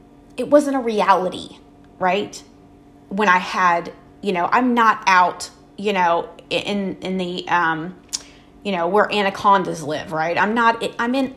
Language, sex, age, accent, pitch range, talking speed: English, female, 30-49, American, 180-245 Hz, 155 wpm